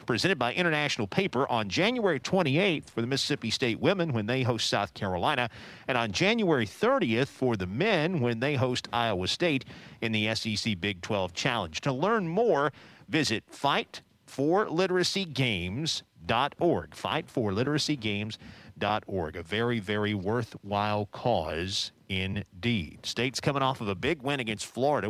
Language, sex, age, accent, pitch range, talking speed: English, male, 50-69, American, 105-130 Hz, 135 wpm